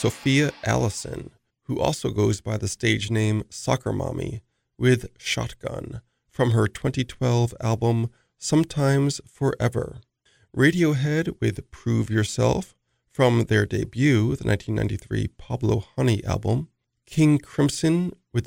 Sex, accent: male, American